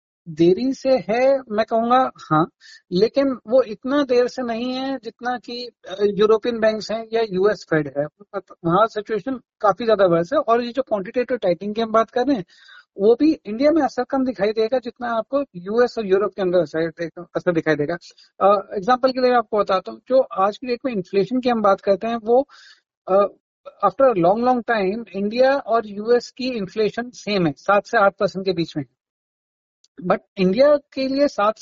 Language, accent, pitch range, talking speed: Hindi, native, 195-255 Hz, 190 wpm